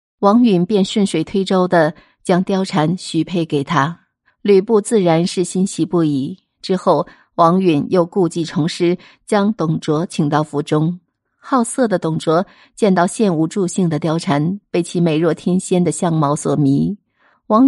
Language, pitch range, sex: Chinese, 160-190 Hz, female